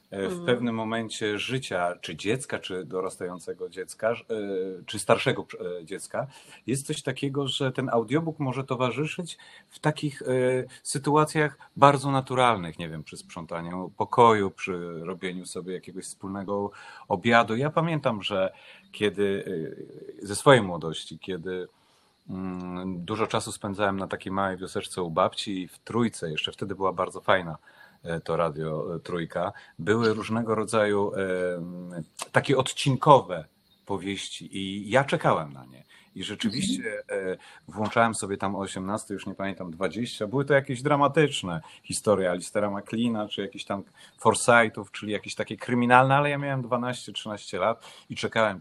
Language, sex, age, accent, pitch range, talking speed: Polish, male, 30-49, native, 95-135 Hz, 135 wpm